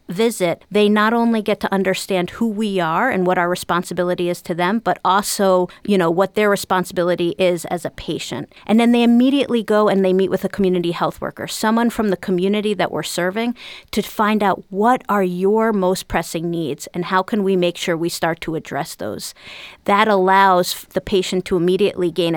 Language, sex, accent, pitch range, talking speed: English, female, American, 175-205 Hz, 200 wpm